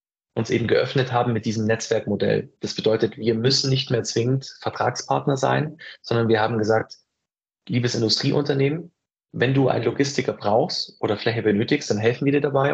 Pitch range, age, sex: 115-140 Hz, 30-49, male